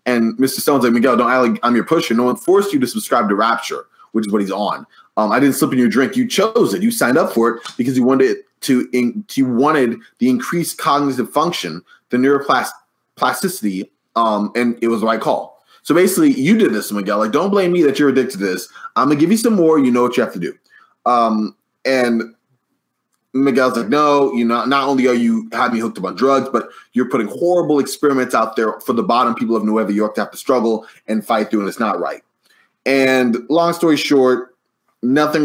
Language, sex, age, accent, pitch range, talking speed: English, male, 20-39, American, 115-150 Hz, 230 wpm